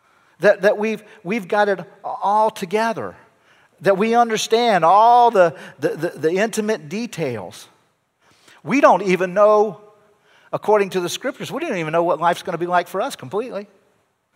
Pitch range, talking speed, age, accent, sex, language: 145-210 Hz, 160 wpm, 50-69, American, male, English